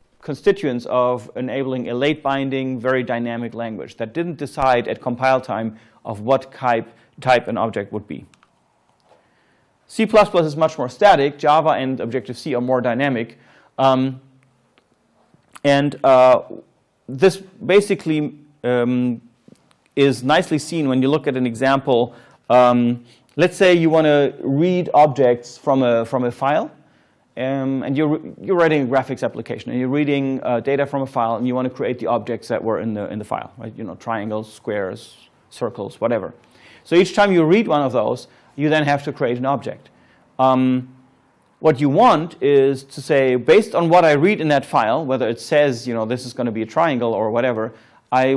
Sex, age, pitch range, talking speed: male, 30-49, 125-150 Hz, 175 wpm